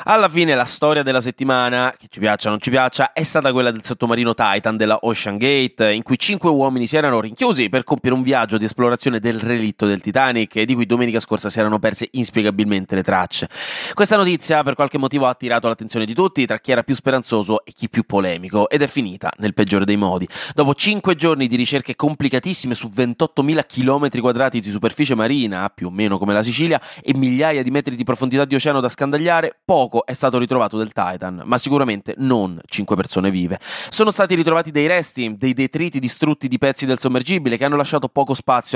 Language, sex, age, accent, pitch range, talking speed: Italian, male, 20-39, native, 110-140 Hz, 205 wpm